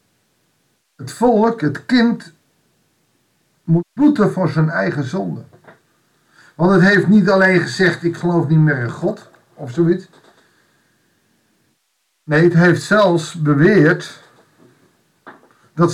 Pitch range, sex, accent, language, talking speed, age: 145-190 Hz, male, Dutch, Dutch, 115 wpm, 50-69